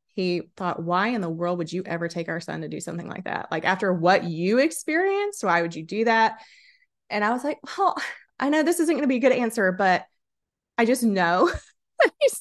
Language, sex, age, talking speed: English, female, 20-39, 225 wpm